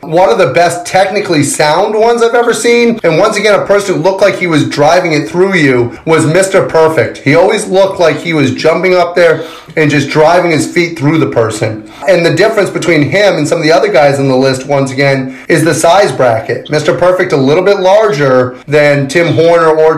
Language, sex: English, male